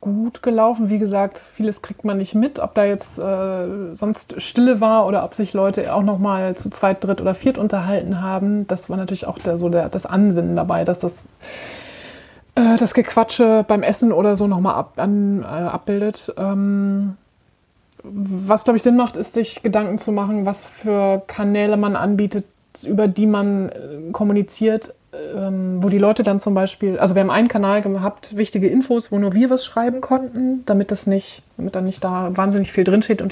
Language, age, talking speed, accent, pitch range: German, 30-49, 190 wpm, German, 190-215 Hz